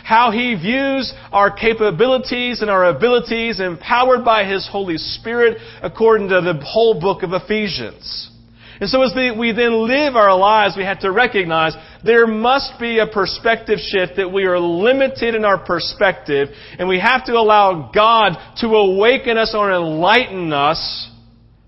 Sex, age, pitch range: male, 40-59, 155-220 Hz